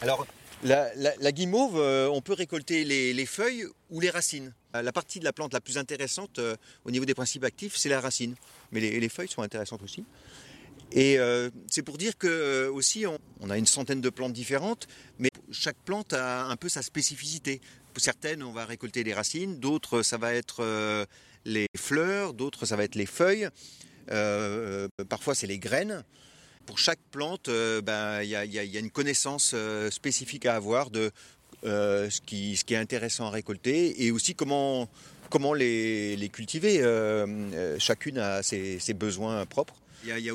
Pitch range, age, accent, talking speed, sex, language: 110-145 Hz, 40-59, French, 195 wpm, male, French